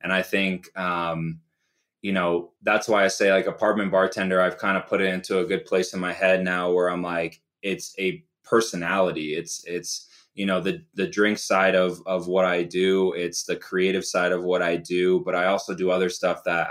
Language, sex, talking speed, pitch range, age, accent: English, male, 215 wpm, 90-95 Hz, 20-39, American